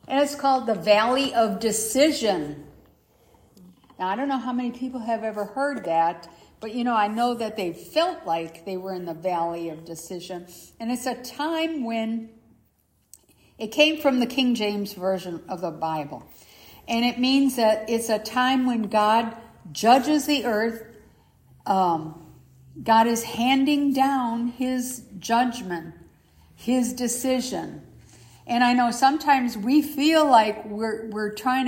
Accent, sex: American, female